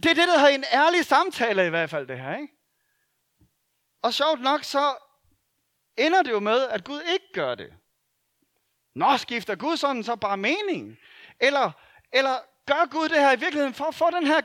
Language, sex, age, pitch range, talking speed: Danish, male, 40-59, 200-295 Hz, 195 wpm